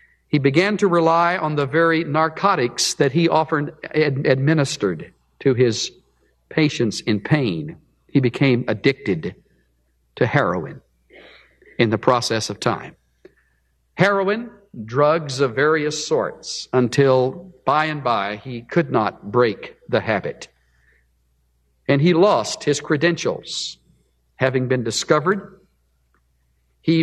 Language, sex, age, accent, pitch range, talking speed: English, male, 50-69, American, 120-190 Hz, 115 wpm